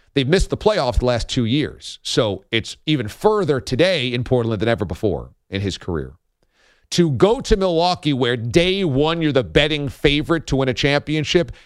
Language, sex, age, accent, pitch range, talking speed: English, male, 40-59, American, 110-155 Hz, 185 wpm